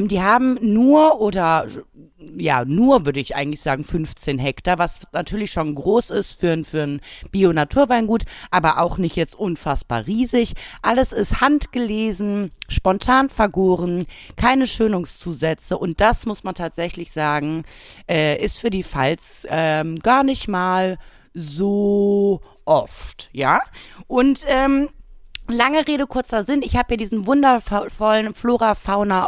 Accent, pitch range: German, 165-220 Hz